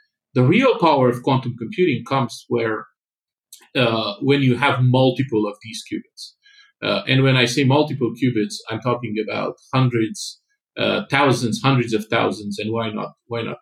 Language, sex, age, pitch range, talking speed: English, male, 40-59, 125-175 Hz, 165 wpm